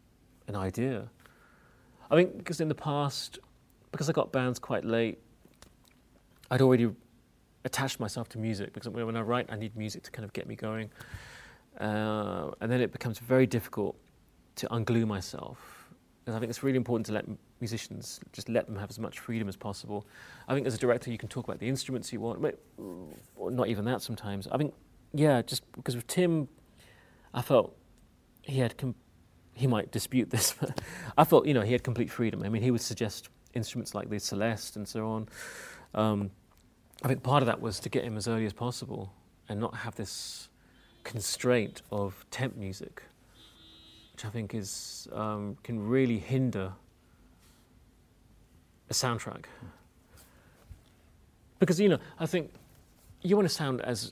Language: English